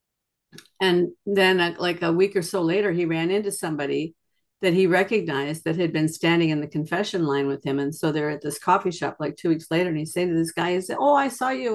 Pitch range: 165-215 Hz